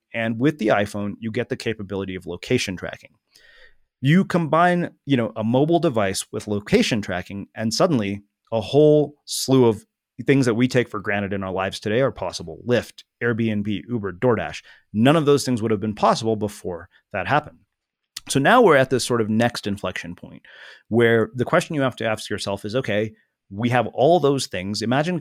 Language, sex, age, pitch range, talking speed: English, male, 30-49, 105-130 Hz, 190 wpm